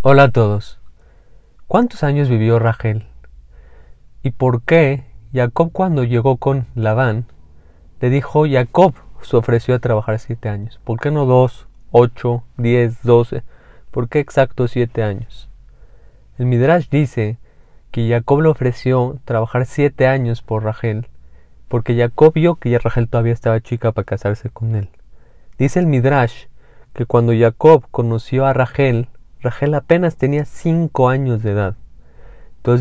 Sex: male